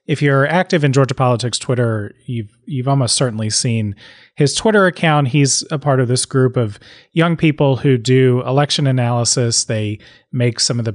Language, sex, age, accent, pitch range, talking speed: English, male, 30-49, American, 115-140 Hz, 180 wpm